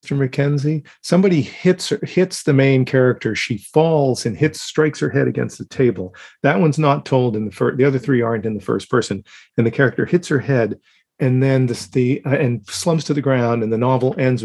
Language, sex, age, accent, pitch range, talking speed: English, male, 40-59, American, 105-135 Hz, 225 wpm